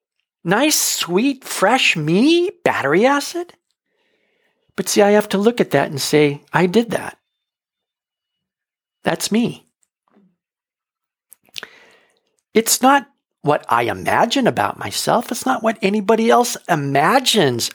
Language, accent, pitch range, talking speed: English, American, 165-245 Hz, 115 wpm